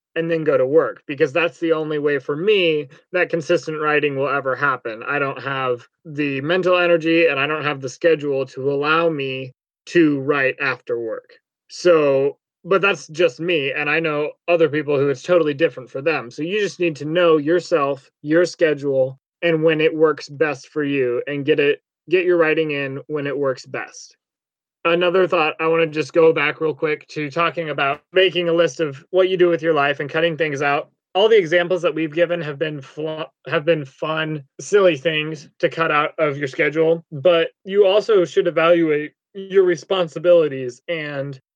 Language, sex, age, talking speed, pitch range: English, male, 20-39, 195 wpm, 150-175 Hz